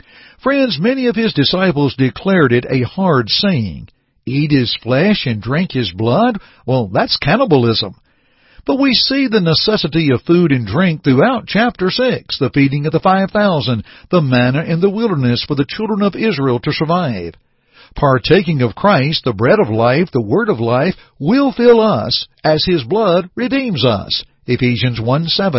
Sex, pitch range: male, 125-185 Hz